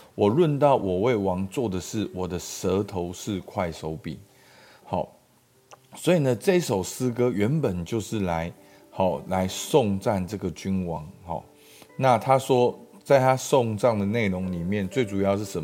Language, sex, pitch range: Chinese, male, 95-130 Hz